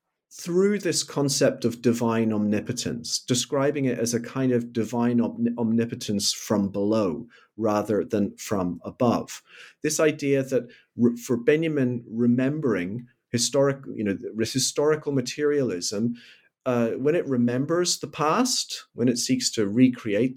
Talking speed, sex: 125 wpm, male